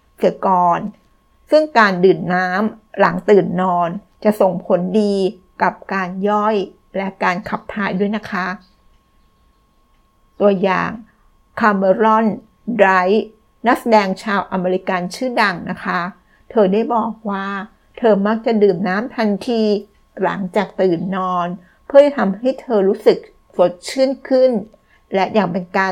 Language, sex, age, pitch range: Thai, female, 60-79, 185-220 Hz